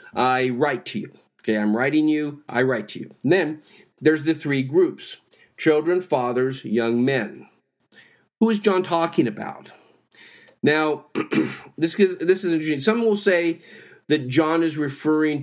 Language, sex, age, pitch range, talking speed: English, male, 50-69, 120-165 Hz, 145 wpm